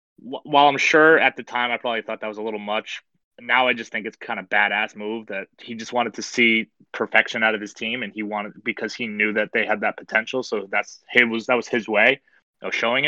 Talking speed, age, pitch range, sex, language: 250 wpm, 20-39, 110-130 Hz, male, English